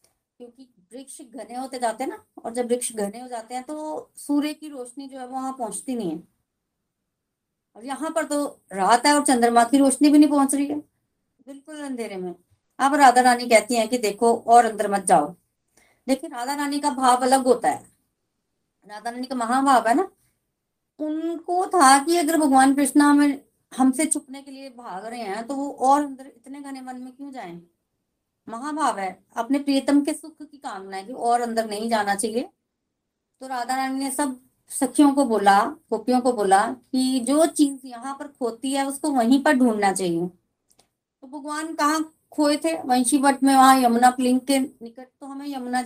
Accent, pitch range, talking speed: native, 235-280 Hz, 190 wpm